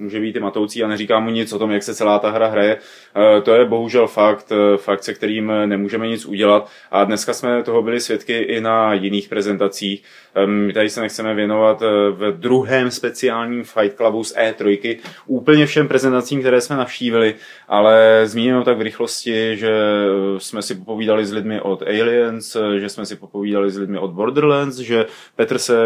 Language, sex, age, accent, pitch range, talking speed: Czech, male, 20-39, native, 105-130 Hz, 180 wpm